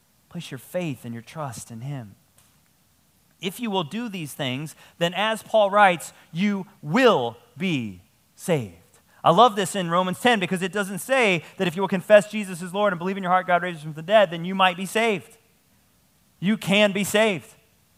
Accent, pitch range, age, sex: American, 140-205 Hz, 30-49, male